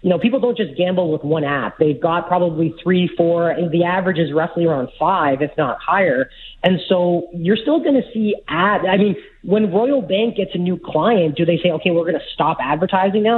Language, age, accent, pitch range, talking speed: English, 30-49, American, 165-220 Hz, 220 wpm